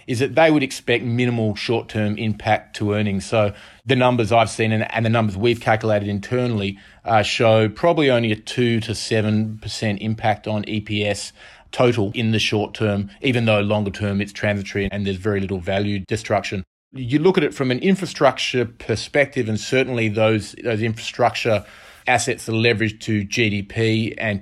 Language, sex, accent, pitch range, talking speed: English, male, Australian, 105-115 Hz, 170 wpm